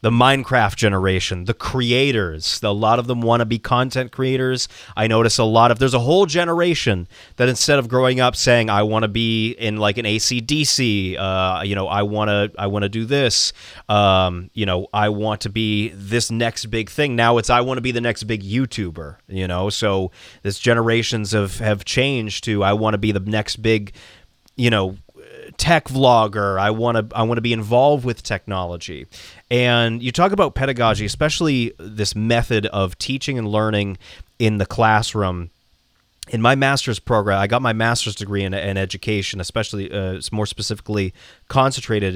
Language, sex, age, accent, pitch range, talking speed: English, male, 30-49, American, 100-125 Hz, 185 wpm